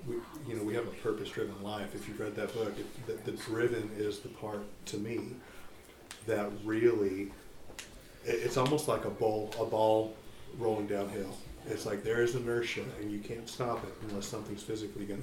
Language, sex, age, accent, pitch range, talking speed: English, male, 40-59, American, 105-130 Hz, 190 wpm